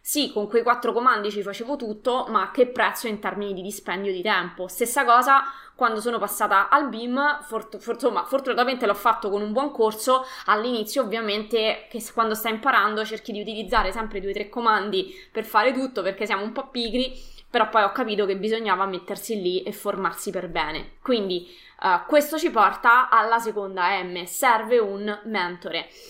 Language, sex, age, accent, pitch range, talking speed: Italian, female, 20-39, native, 205-250 Hz, 170 wpm